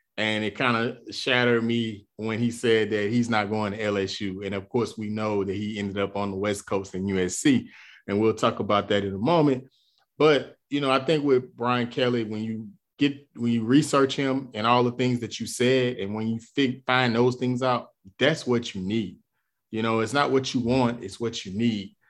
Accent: American